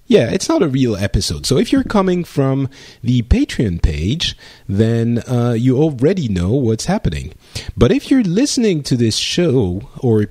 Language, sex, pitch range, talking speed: English, male, 105-155 Hz, 170 wpm